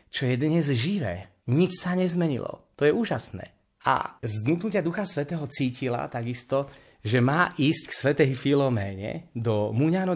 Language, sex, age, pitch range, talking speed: Slovak, male, 30-49, 110-145 Hz, 140 wpm